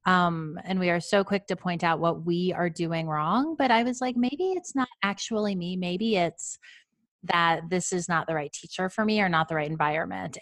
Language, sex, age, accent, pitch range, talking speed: English, female, 30-49, American, 165-200 Hz, 225 wpm